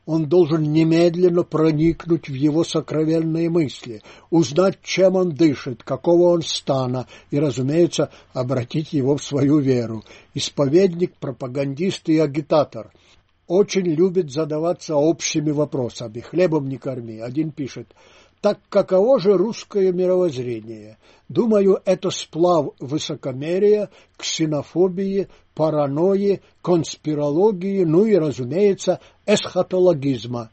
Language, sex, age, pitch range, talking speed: Russian, male, 60-79, 135-170 Hz, 100 wpm